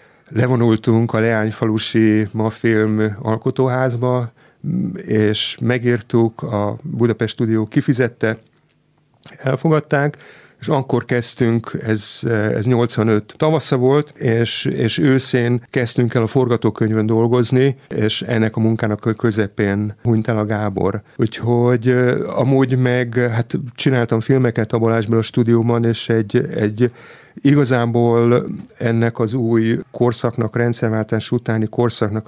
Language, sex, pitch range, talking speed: Hungarian, male, 110-125 Hz, 110 wpm